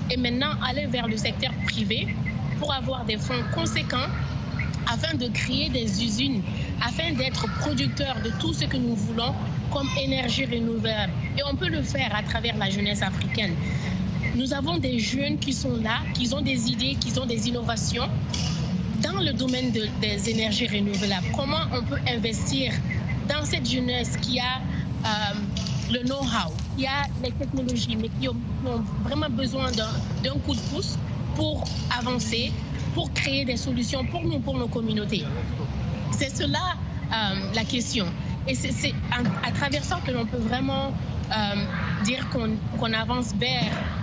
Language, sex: French, female